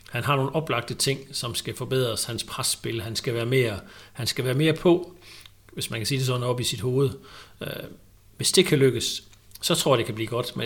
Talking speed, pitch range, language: 230 wpm, 115-145 Hz, Danish